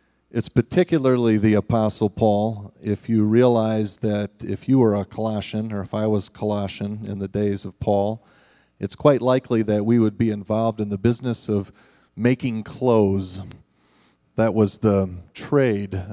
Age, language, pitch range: 40-59, English, 95-120 Hz